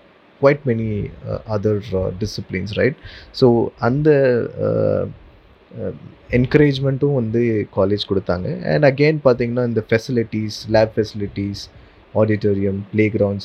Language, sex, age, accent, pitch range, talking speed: Tamil, male, 20-39, native, 100-115 Hz, 120 wpm